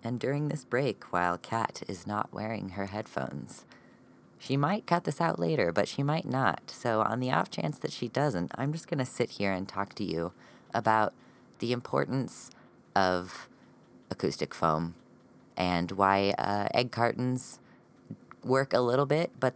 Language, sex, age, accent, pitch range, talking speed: English, female, 20-39, American, 90-125 Hz, 170 wpm